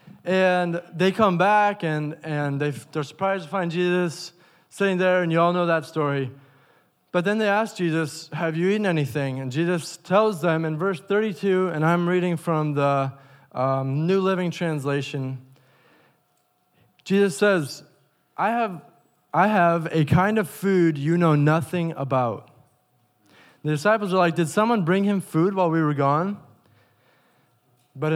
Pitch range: 145-200 Hz